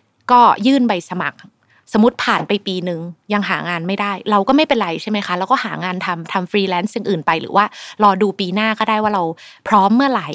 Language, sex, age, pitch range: Thai, female, 20-39, 180-245 Hz